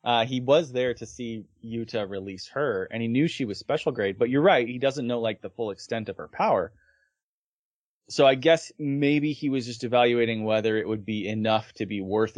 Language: English